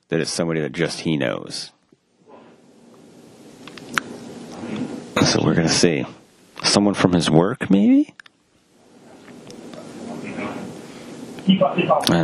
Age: 30-49